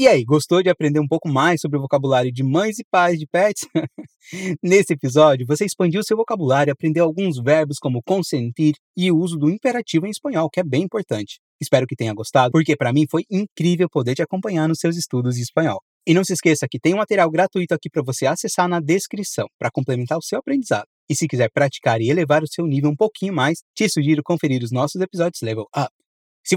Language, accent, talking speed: Portuguese, Brazilian, 220 wpm